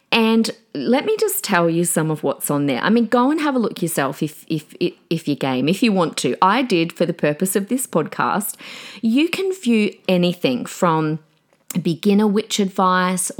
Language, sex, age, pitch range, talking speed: English, female, 40-59, 155-220 Hz, 195 wpm